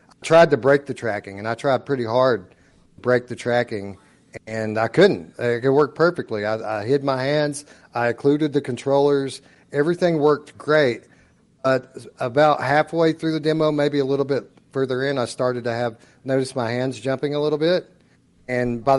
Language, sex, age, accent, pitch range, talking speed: English, male, 40-59, American, 115-145 Hz, 185 wpm